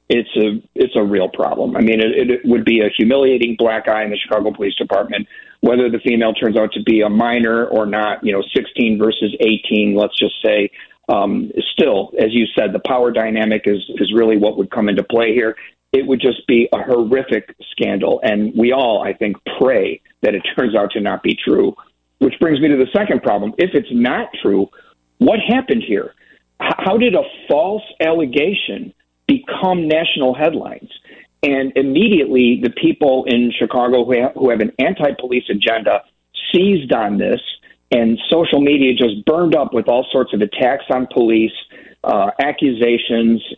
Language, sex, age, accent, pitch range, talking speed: English, male, 50-69, American, 110-135 Hz, 180 wpm